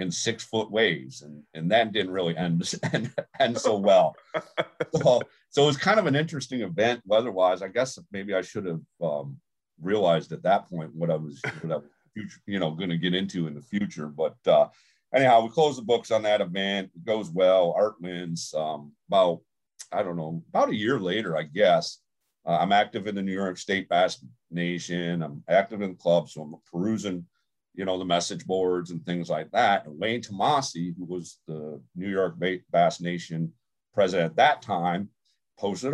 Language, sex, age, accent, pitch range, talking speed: English, male, 50-69, American, 80-100 Hz, 200 wpm